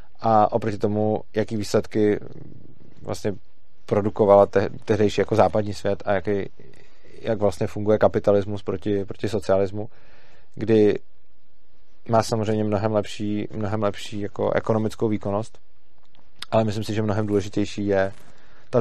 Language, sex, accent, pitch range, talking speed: Czech, male, native, 100-110 Hz, 115 wpm